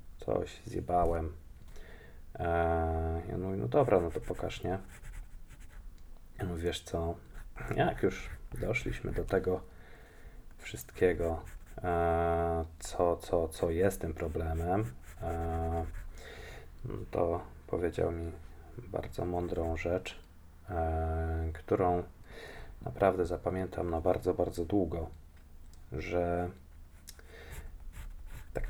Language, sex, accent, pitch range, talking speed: Polish, male, native, 80-90 Hz, 95 wpm